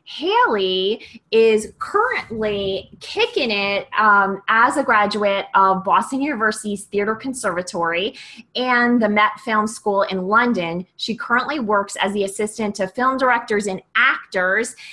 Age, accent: 20-39, American